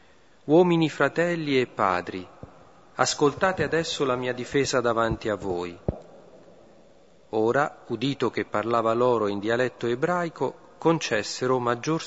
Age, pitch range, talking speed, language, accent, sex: 40-59, 120-150 Hz, 110 wpm, Italian, native, male